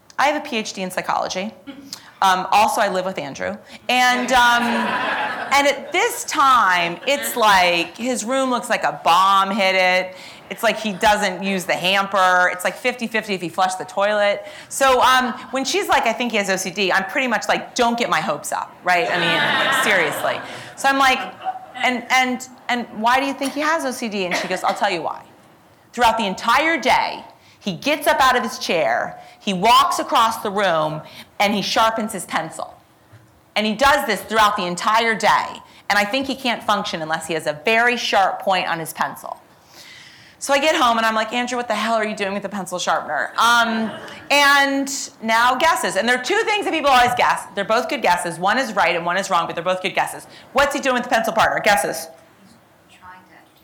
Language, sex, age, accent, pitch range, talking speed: English, female, 30-49, American, 185-255 Hz, 210 wpm